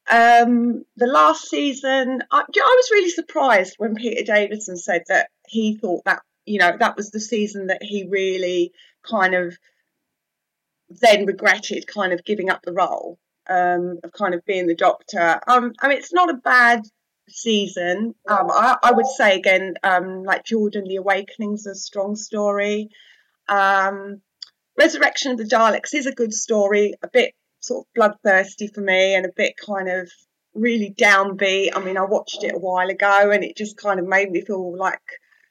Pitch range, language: 185-240 Hz, English